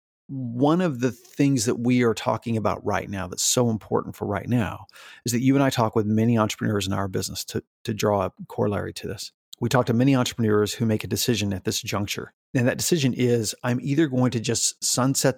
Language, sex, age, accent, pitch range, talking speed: English, male, 40-59, American, 105-130 Hz, 225 wpm